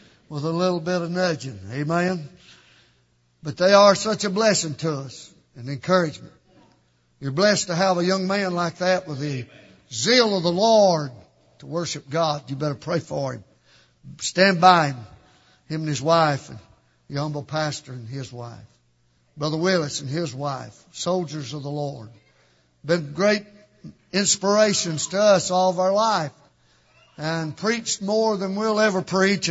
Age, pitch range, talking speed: 60-79, 145-195 Hz, 160 wpm